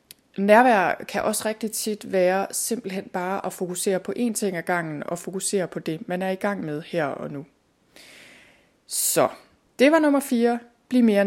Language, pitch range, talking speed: Danish, 185-220 Hz, 180 wpm